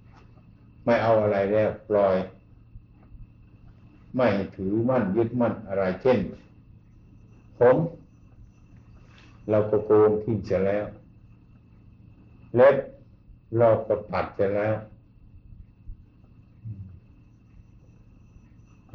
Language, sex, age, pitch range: Thai, male, 60-79, 105-115 Hz